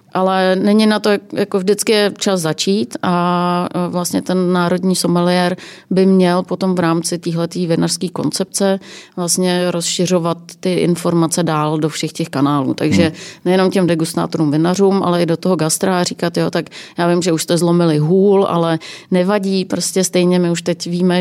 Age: 30-49